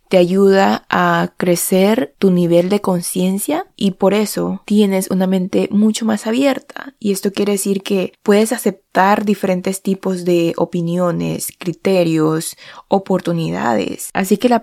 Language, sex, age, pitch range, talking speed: Spanish, female, 20-39, 175-210 Hz, 135 wpm